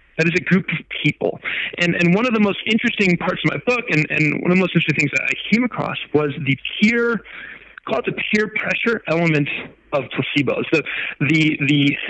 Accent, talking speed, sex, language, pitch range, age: American, 210 wpm, male, English, 140-190 Hz, 30-49